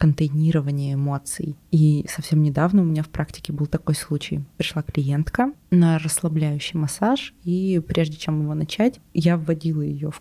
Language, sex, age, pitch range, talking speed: Russian, female, 20-39, 150-175 Hz, 155 wpm